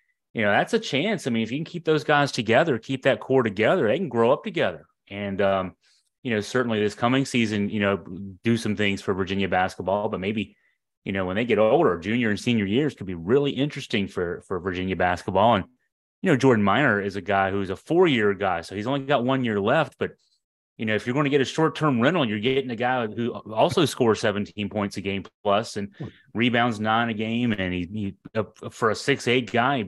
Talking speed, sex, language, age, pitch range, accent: 230 wpm, male, English, 30-49, 100-130 Hz, American